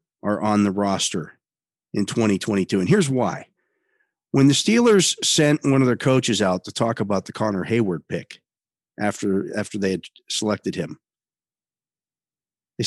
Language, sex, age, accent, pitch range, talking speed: English, male, 50-69, American, 105-145 Hz, 150 wpm